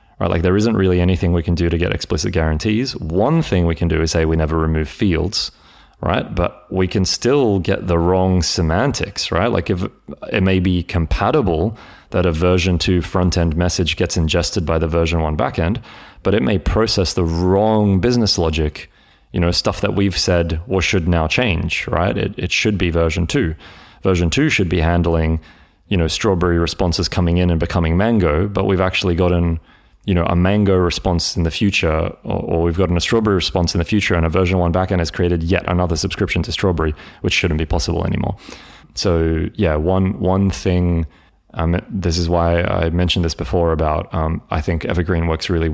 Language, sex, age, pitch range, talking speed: English, male, 30-49, 85-95 Hz, 195 wpm